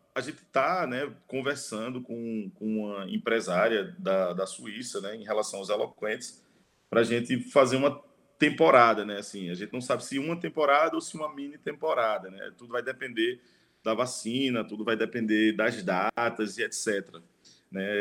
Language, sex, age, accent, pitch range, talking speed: Portuguese, male, 20-39, Brazilian, 105-150 Hz, 170 wpm